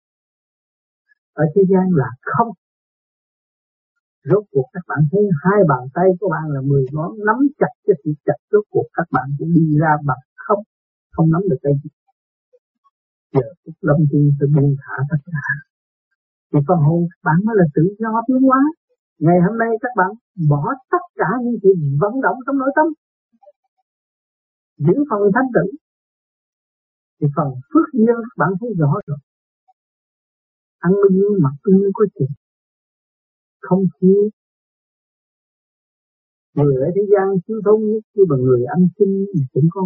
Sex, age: male, 50-69